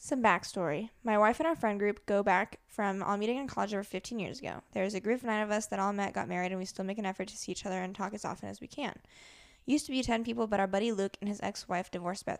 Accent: American